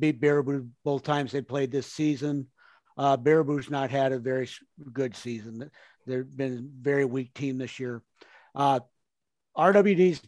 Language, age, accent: English, 50-69, American